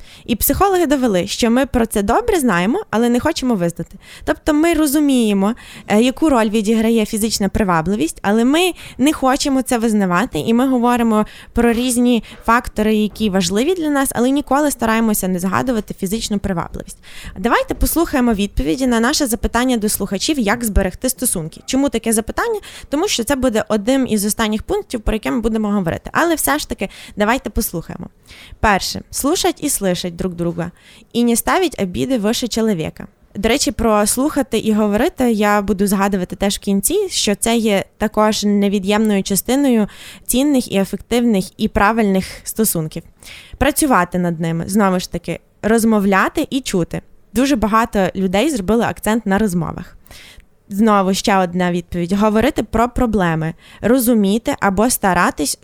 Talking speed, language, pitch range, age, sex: 150 wpm, Ukrainian, 200-255 Hz, 20-39, female